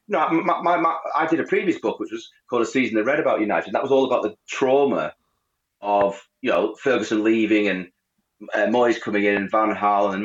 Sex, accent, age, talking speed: male, British, 30-49, 230 wpm